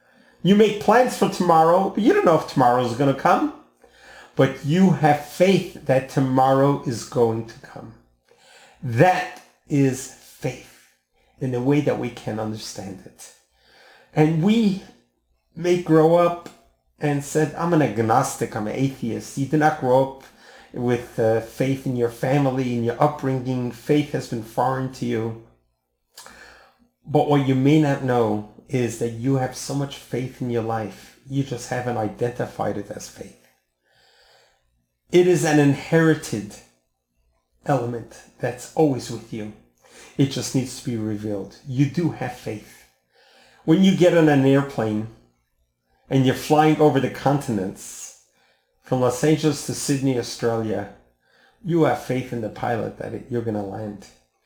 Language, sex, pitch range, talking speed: English, male, 110-150 Hz, 155 wpm